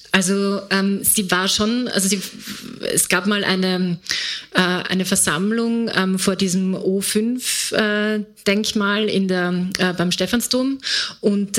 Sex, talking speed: female, 120 wpm